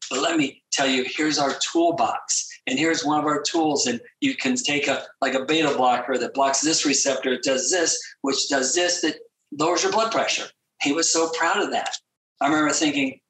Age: 50-69